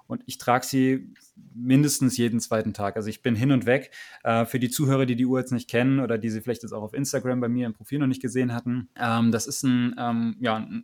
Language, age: German, 20-39